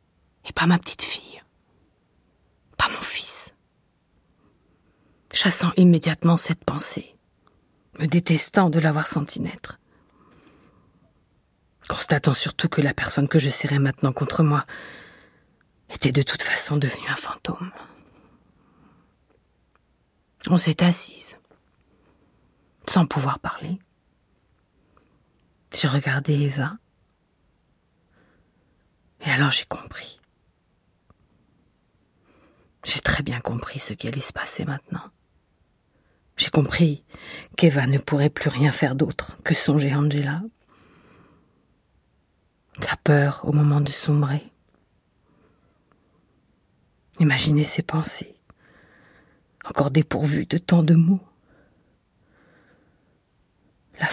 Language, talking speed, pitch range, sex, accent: French, 95 wpm, 145-170 Hz, female, French